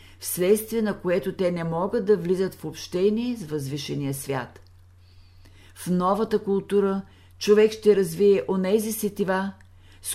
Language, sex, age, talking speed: Bulgarian, female, 50-69, 130 wpm